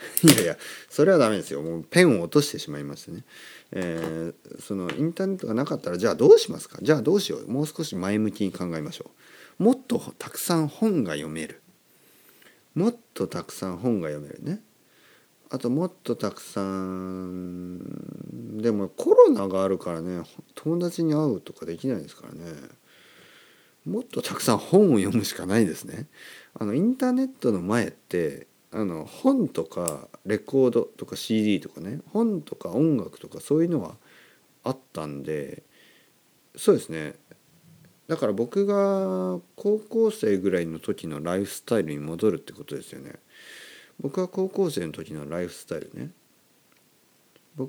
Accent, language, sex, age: native, Japanese, male, 40-59